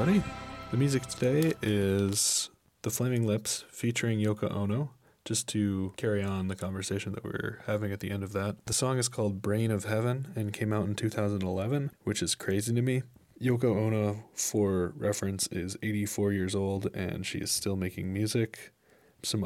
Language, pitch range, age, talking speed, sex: English, 105-125 Hz, 20-39, 175 wpm, male